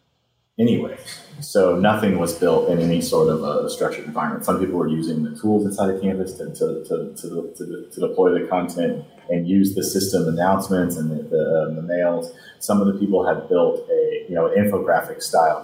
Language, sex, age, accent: English, male, 30-49, American